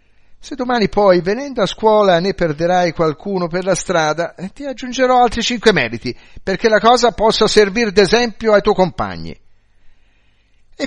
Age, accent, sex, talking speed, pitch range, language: 50-69, native, male, 150 wpm, 145-225 Hz, Italian